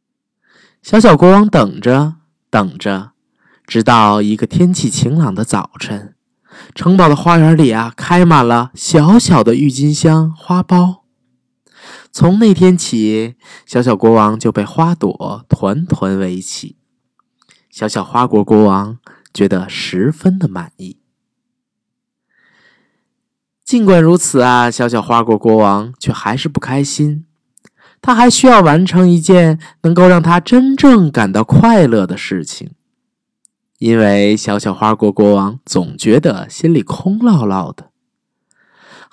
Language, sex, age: Chinese, male, 20-39